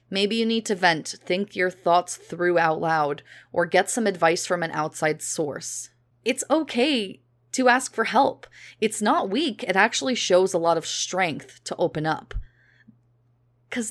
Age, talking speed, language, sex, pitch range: 20-39, 170 wpm, English, female, 165-230 Hz